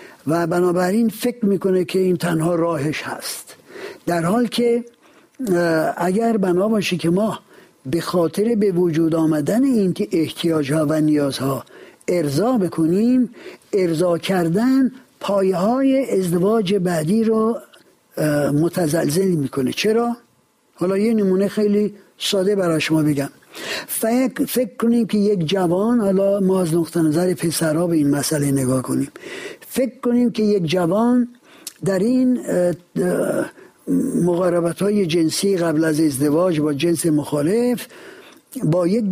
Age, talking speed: 60-79, 125 wpm